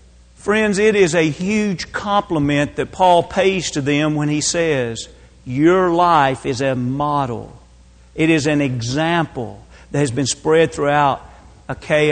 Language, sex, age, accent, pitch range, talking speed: English, male, 40-59, American, 145-195 Hz, 145 wpm